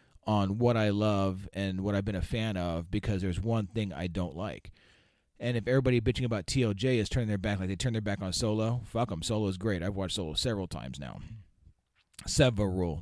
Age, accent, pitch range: 30-49, American, 95-125 Hz